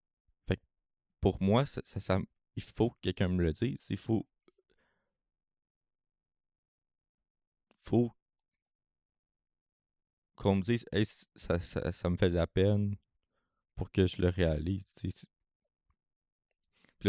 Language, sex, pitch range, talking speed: French, male, 85-105 Hz, 120 wpm